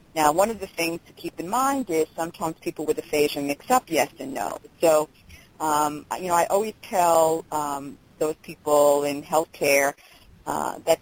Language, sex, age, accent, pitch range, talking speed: English, female, 50-69, American, 150-185 Hz, 180 wpm